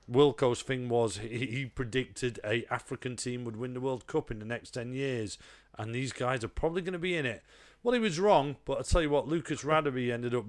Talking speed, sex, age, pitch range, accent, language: 240 wpm, male, 40-59, 105-130 Hz, British, English